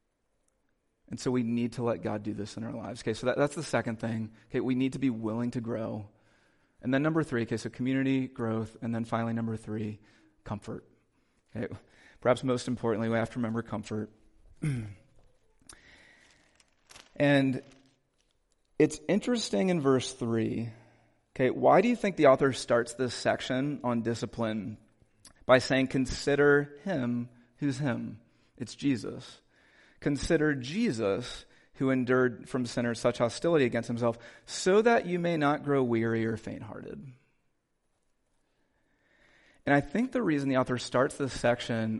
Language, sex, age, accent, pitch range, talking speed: English, male, 30-49, American, 115-140 Hz, 150 wpm